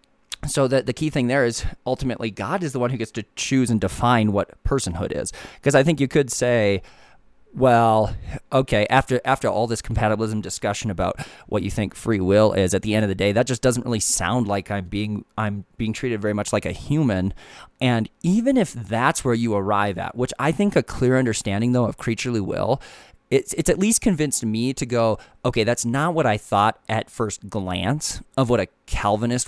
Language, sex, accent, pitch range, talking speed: English, male, American, 100-130 Hz, 210 wpm